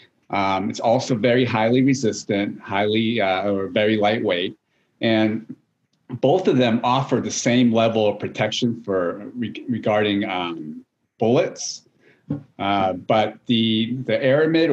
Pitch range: 100-130 Hz